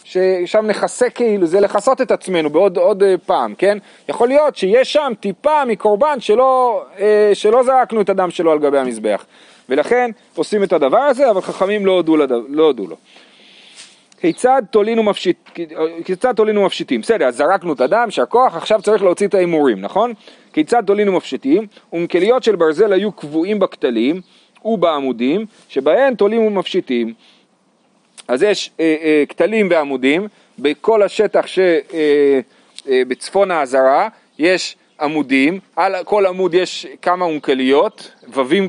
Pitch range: 160-220 Hz